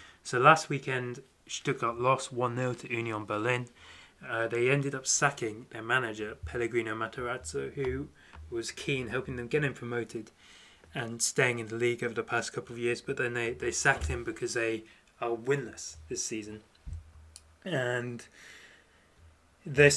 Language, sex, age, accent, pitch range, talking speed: English, male, 20-39, British, 105-125 Hz, 155 wpm